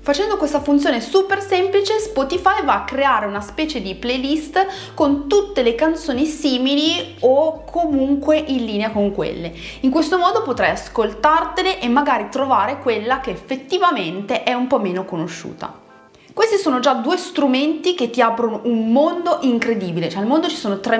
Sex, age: female, 30-49